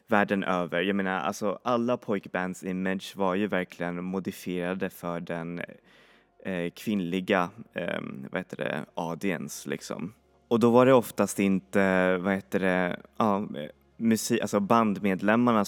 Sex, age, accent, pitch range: male, 20-39, native, 90-110 Hz